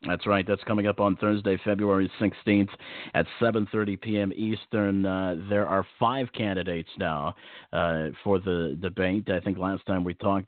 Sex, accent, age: male, American, 50-69